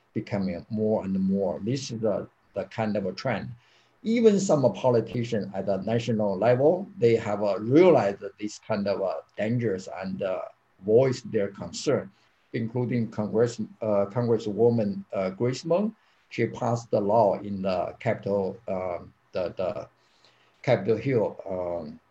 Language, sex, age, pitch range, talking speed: English, male, 50-69, 100-125 Hz, 145 wpm